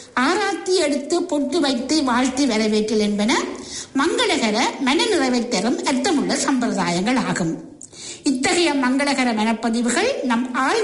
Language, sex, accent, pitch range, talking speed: English, female, Indian, 225-325 Hz, 160 wpm